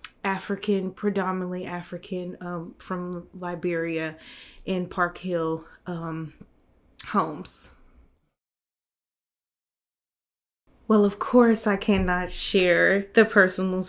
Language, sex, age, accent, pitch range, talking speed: English, female, 20-39, American, 170-190 Hz, 80 wpm